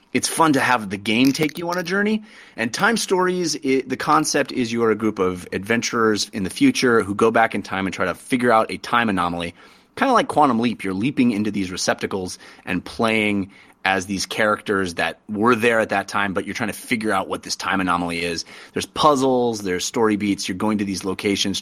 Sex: male